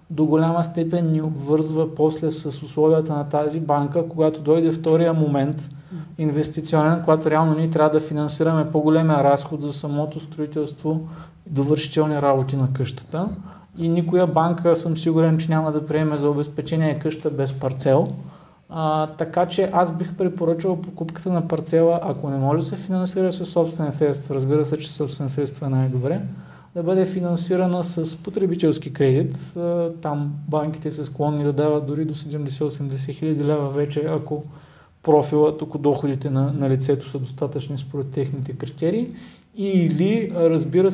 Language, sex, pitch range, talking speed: Bulgarian, male, 145-165 Hz, 150 wpm